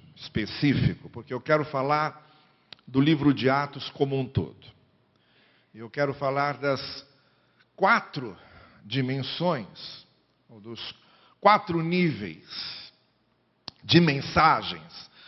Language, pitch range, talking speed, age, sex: Portuguese, 130-160 Hz, 90 wpm, 60-79, male